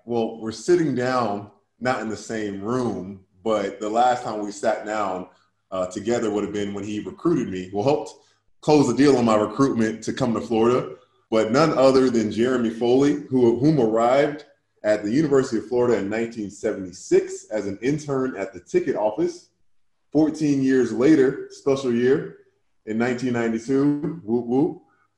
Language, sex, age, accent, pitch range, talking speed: English, male, 20-39, American, 105-135 Hz, 160 wpm